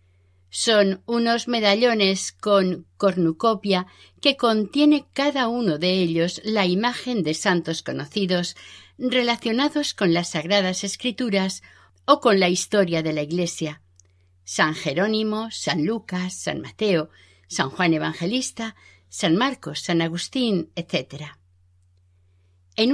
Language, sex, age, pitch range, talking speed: Spanish, female, 50-69, 155-215 Hz, 110 wpm